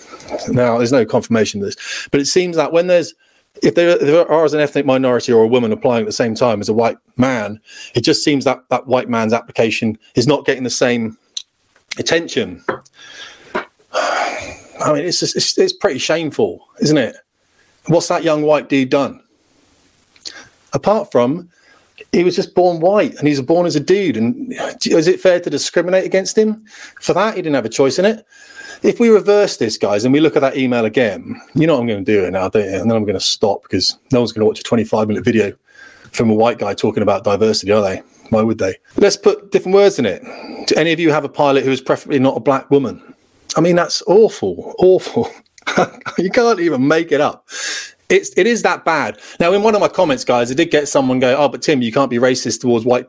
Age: 30-49